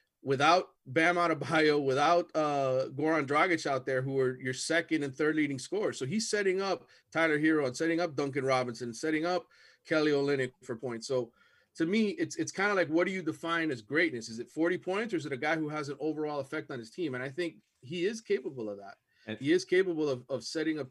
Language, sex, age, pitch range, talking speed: English, male, 30-49, 135-165 Hz, 230 wpm